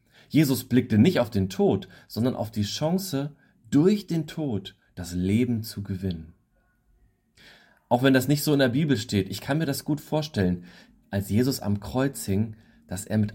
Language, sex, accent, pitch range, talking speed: German, male, German, 95-130 Hz, 180 wpm